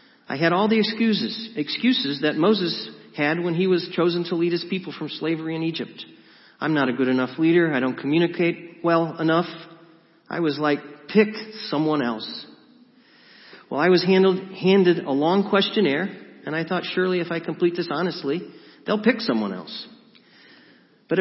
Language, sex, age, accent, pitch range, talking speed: English, male, 40-59, American, 145-195 Hz, 165 wpm